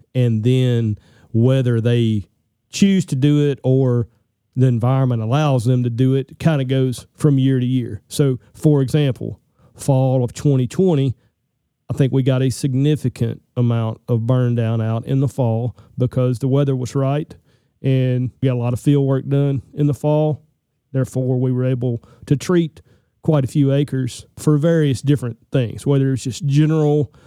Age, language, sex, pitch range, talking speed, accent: 40-59, English, male, 120-145 Hz, 170 wpm, American